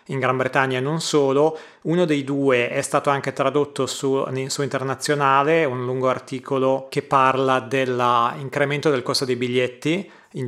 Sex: male